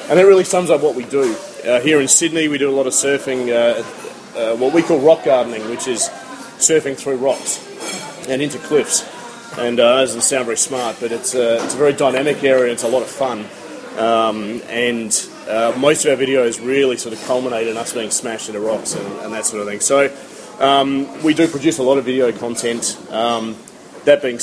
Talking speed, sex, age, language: 220 wpm, male, 30-49, English